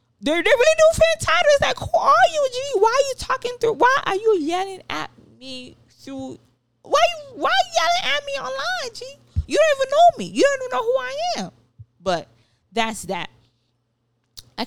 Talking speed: 200 wpm